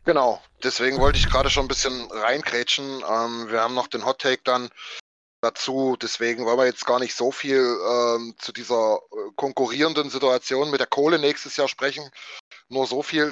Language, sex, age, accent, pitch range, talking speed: German, male, 20-39, German, 120-145 Hz, 185 wpm